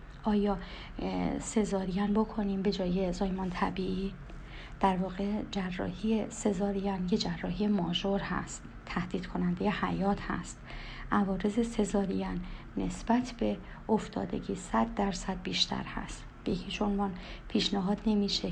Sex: female